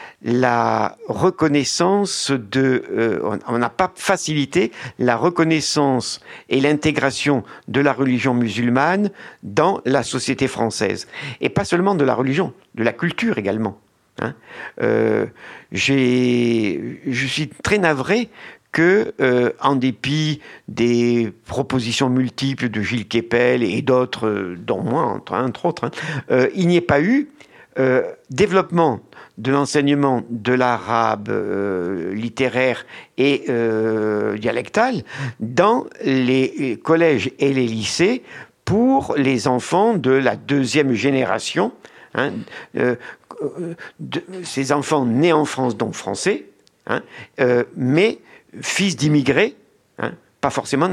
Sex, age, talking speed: male, 50-69, 120 wpm